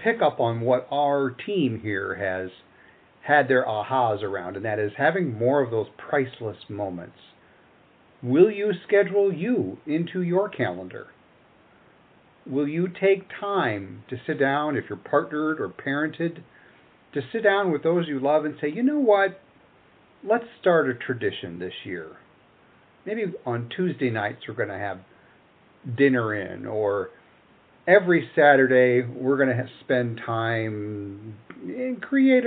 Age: 50-69